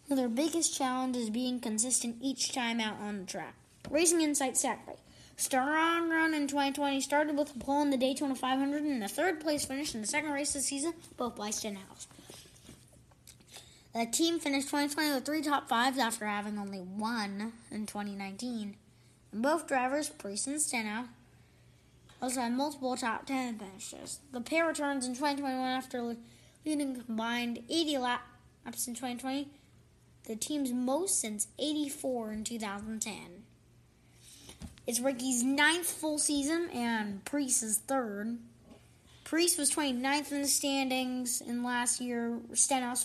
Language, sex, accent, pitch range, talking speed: English, female, American, 230-290 Hz, 155 wpm